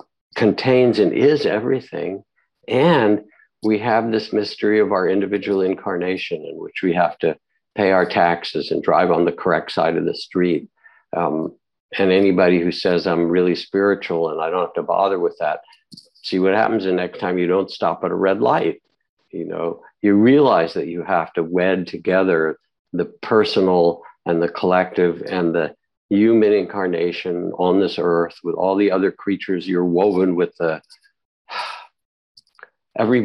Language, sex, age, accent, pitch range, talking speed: English, male, 60-79, American, 95-125 Hz, 165 wpm